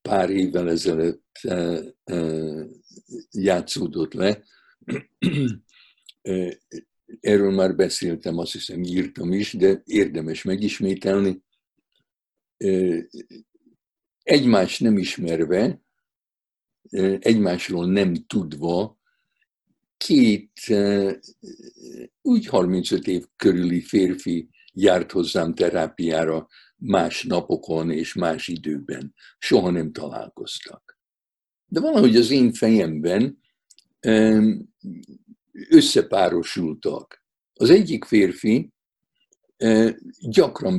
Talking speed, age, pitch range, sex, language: 70 wpm, 60-79, 90-115 Hz, male, Hungarian